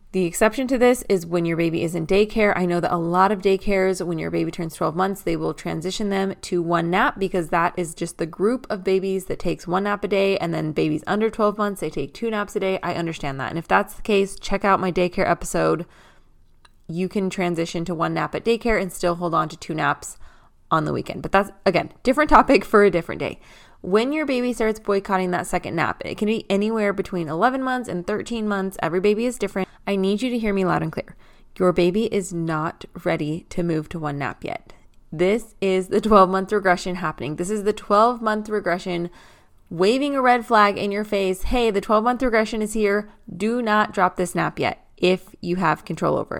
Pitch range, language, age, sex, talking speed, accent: 175-210 Hz, English, 20-39, female, 225 wpm, American